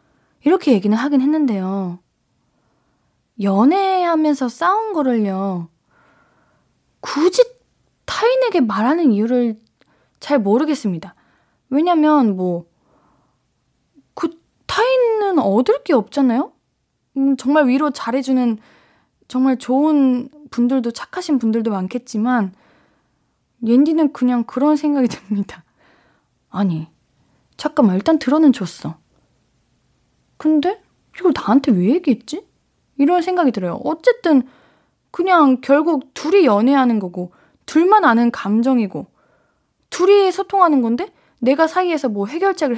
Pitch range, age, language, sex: 225-305 Hz, 20-39, Korean, female